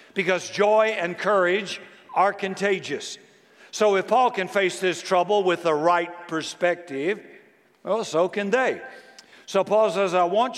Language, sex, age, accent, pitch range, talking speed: English, male, 60-79, American, 165-210 Hz, 145 wpm